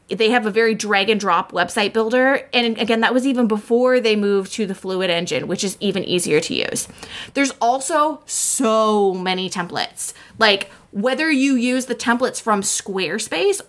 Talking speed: 175 wpm